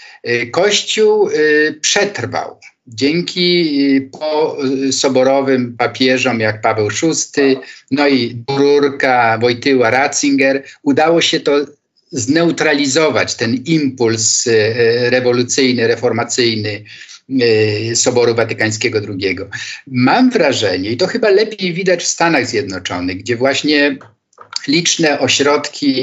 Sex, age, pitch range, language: male, 50-69, 120-165 Hz, Polish